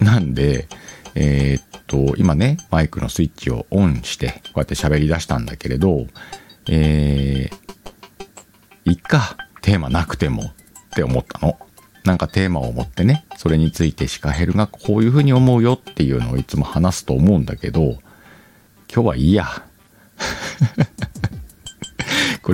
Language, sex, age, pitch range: Japanese, male, 50-69, 75-100 Hz